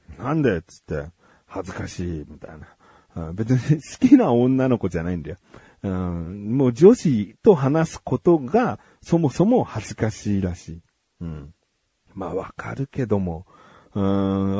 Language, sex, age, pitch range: Japanese, male, 40-59, 100-155 Hz